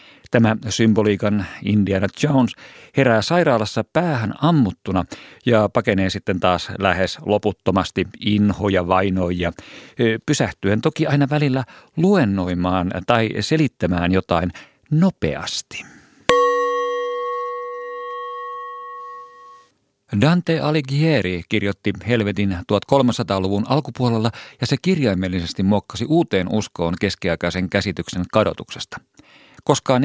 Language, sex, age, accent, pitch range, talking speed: Finnish, male, 50-69, native, 95-130 Hz, 80 wpm